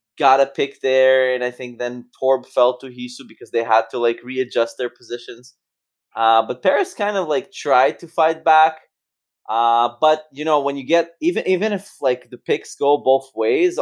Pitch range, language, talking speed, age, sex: 110-135 Hz, English, 200 wpm, 20-39, male